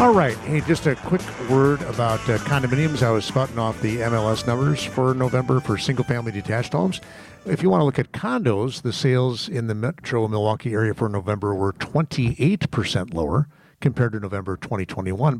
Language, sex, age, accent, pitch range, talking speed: English, male, 50-69, American, 110-160 Hz, 185 wpm